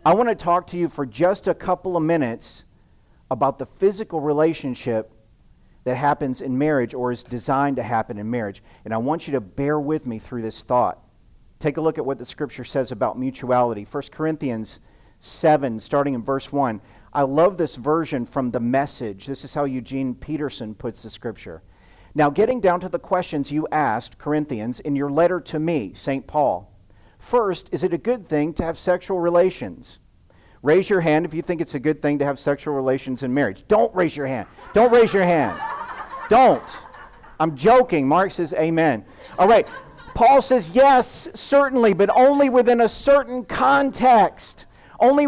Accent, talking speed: American, 185 wpm